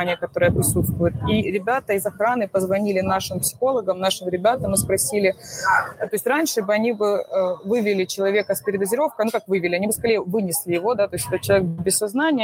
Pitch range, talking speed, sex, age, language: 185-220 Hz, 185 wpm, female, 20-39, Russian